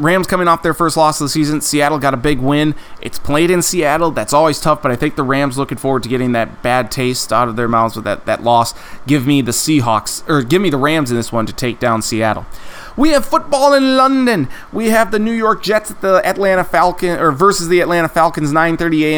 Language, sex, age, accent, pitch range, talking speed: English, male, 30-49, American, 130-175 Hz, 245 wpm